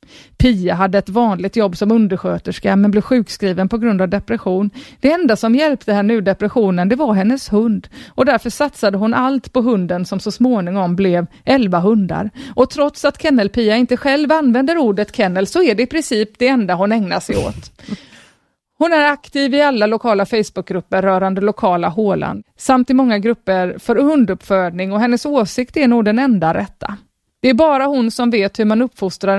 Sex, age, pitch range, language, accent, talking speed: female, 30-49, 195-255 Hz, English, Swedish, 185 wpm